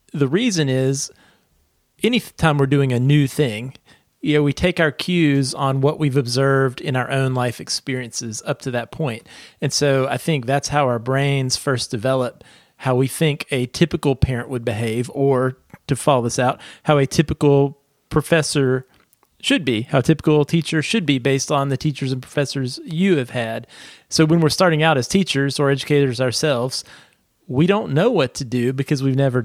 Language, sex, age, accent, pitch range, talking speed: English, male, 40-59, American, 125-150 Hz, 180 wpm